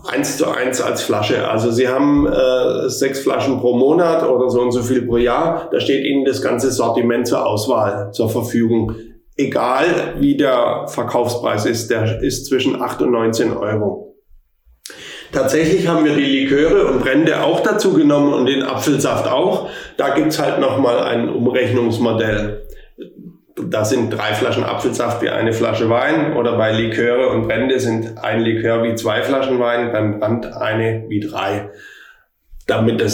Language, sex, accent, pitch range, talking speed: German, male, German, 110-135 Hz, 160 wpm